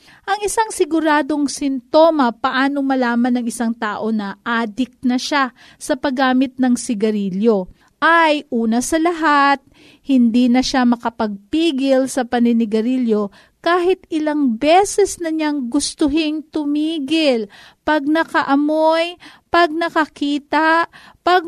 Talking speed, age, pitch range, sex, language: 105 wpm, 40-59, 235-320 Hz, female, Filipino